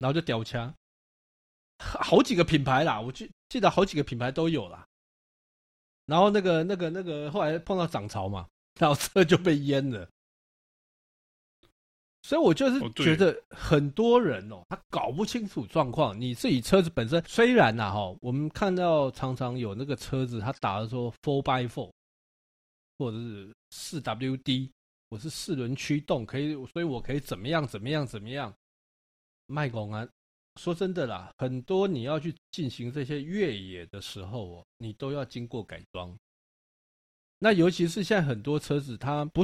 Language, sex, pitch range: Chinese, male, 110-160 Hz